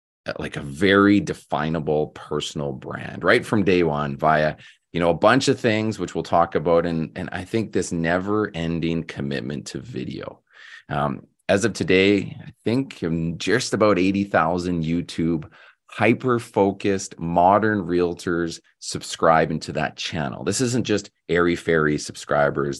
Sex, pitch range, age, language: male, 80-100 Hz, 30-49, English